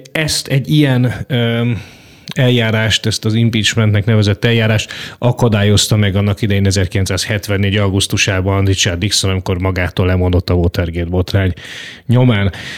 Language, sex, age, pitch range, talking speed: Hungarian, male, 30-49, 100-125 Hz, 115 wpm